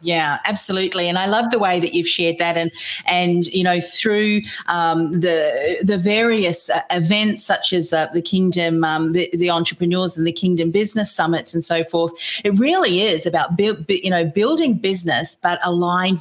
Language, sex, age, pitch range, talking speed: English, female, 40-59, 165-200 Hz, 180 wpm